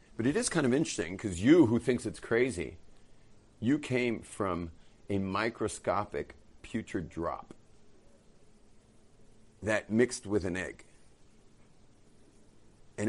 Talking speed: 115 wpm